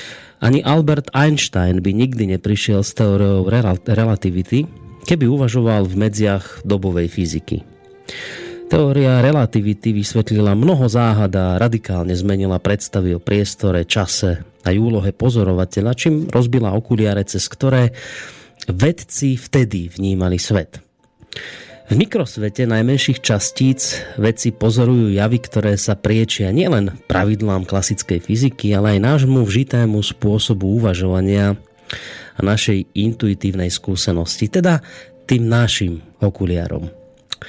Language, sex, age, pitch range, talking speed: Slovak, male, 30-49, 95-120 Hz, 105 wpm